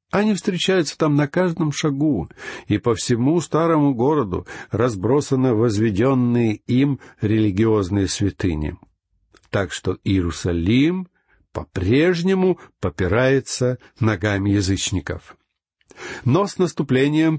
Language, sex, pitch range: Russian, male, 110-150 Hz